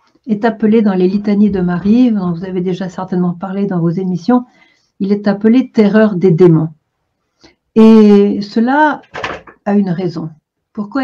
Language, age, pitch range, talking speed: French, 60-79, 185-225 Hz, 150 wpm